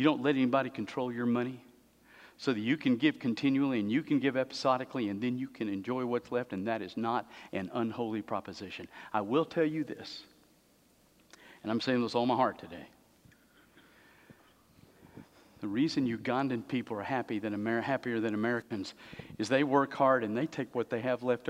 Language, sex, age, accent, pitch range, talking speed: English, male, 50-69, American, 110-135 Hz, 185 wpm